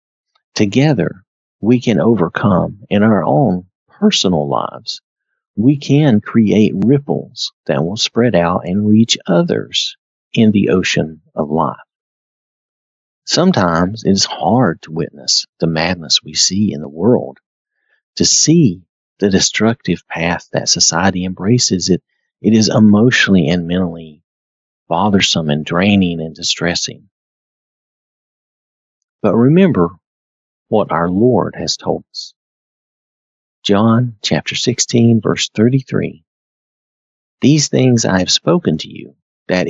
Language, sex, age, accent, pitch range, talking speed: English, male, 50-69, American, 85-115 Hz, 115 wpm